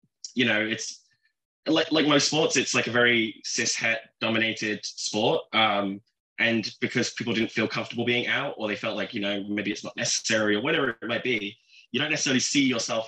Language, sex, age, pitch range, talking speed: English, male, 20-39, 105-130 Hz, 195 wpm